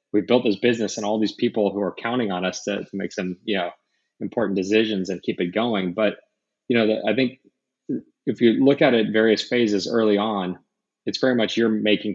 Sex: male